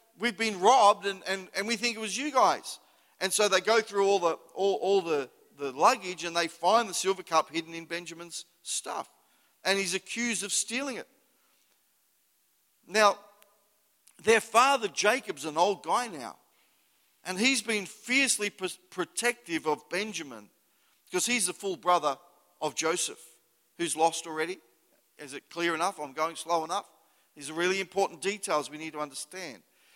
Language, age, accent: English, 50-69, Australian